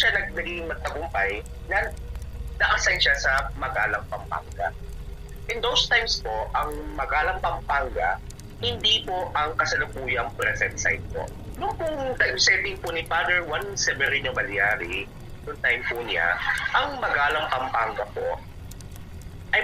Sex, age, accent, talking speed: male, 30-49, native, 130 wpm